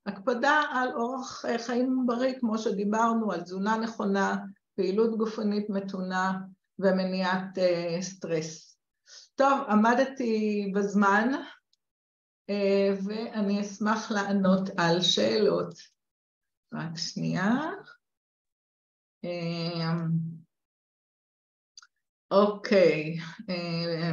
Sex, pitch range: female, 185-215 Hz